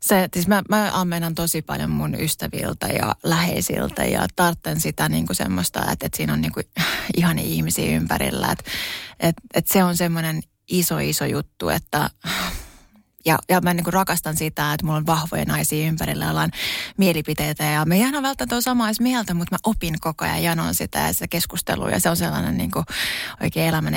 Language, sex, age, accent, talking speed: Finnish, female, 20-39, native, 185 wpm